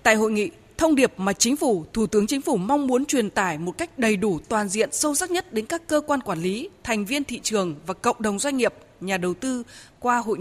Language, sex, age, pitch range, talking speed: Vietnamese, female, 20-39, 200-275 Hz, 260 wpm